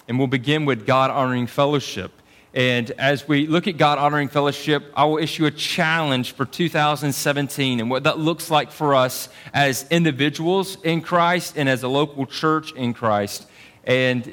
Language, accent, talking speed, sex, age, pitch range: English, American, 170 wpm, male, 30-49, 130-155 Hz